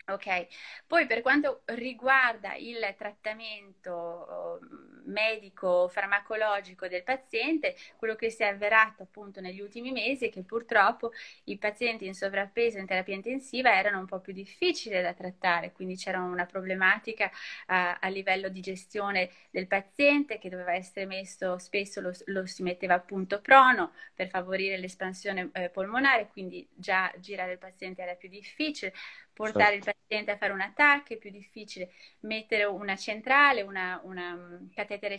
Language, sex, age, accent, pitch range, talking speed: Italian, female, 20-39, native, 190-225 Hz, 145 wpm